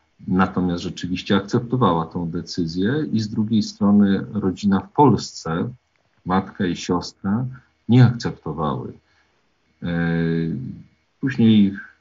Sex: male